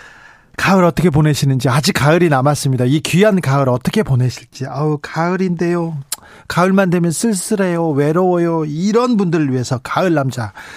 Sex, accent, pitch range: male, native, 135-175 Hz